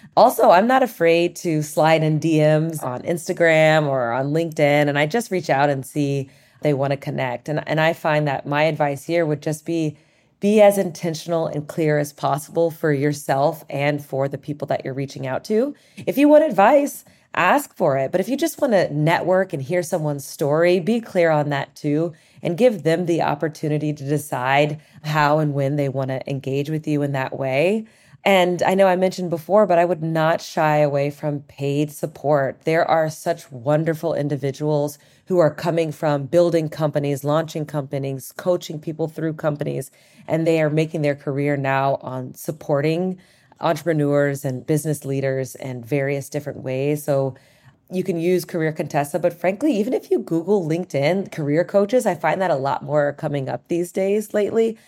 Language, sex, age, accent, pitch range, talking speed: English, female, 30-49, American, 145-175 Hz, 185 wpm